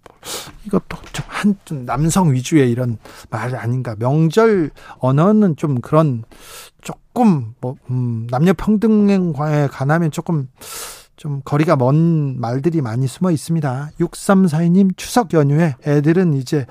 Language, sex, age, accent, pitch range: Korean, male, 40-59, native, 145-200 Hz